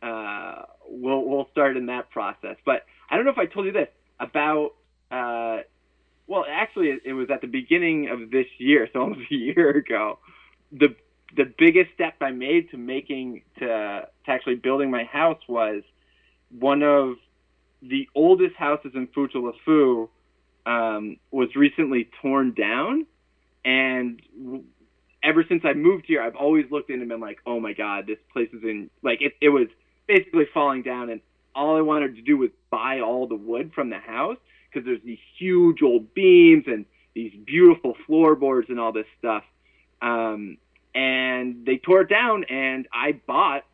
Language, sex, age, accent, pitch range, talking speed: English, male, 20-39, American, 120-165 Hz, 175 wpm